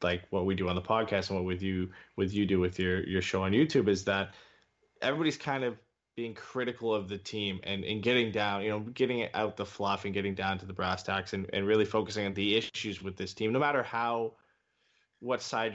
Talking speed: 240 wpm